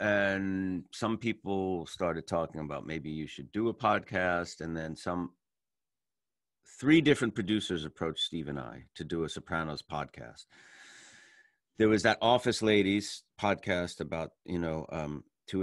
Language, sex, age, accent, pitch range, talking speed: English, male, 40-59, American, 85-110 Hz, 145 wpm